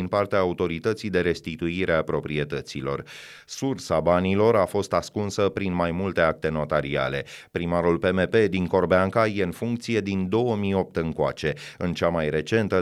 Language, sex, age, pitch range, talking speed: Romanian, male, 30-49, 85-110 Hz, 140 wpm